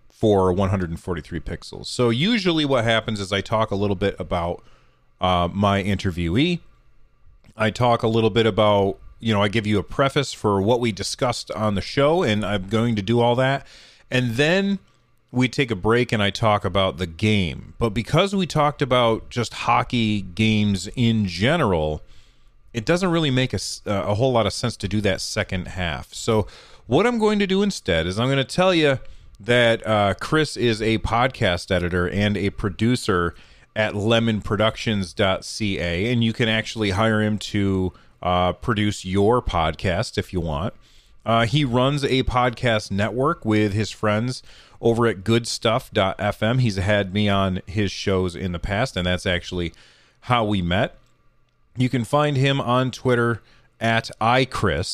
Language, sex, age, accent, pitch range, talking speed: English, male, 30-49, American, 95-120 Hz, 170 wpm